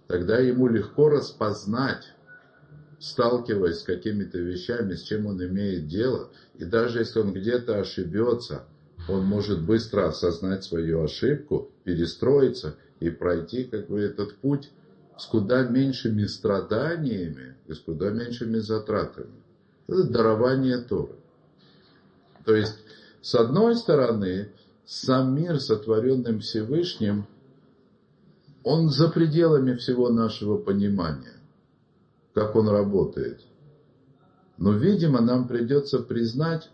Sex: male